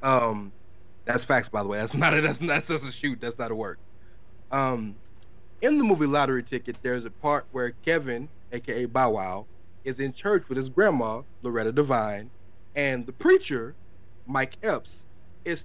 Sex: male